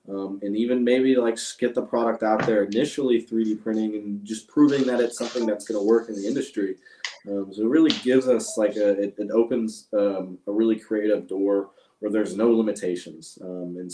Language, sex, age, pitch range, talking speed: English, male, 20-39, 100-115 Hz, 205 wpm